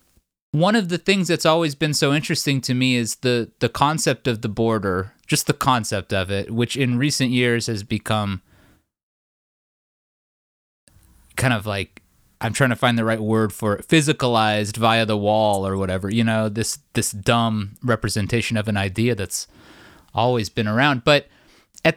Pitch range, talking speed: 105-140 Hz, 170 wpm